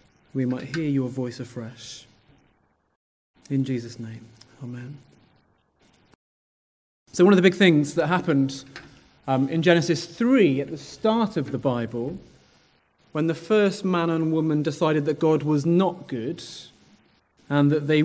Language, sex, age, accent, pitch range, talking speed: English, male, 30-49, British, 135-175 Hz, 145 wpm